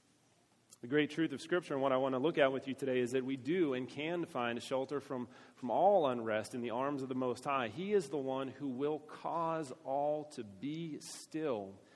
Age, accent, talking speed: 40-59, American, 225 wpm